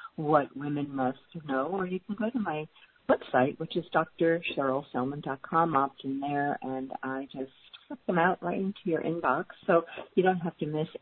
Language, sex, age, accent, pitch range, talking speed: English, female, 50-69, American, 130-170 Hz, 180 wpm